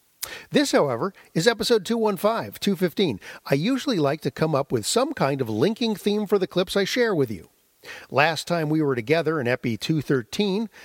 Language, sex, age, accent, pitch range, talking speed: English, male, 50-69, American, 130-205 Hz, 185 wpm